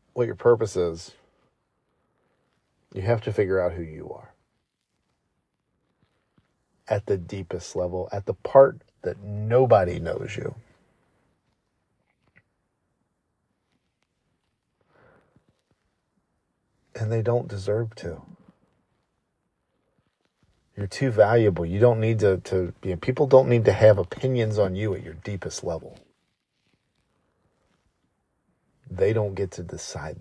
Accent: American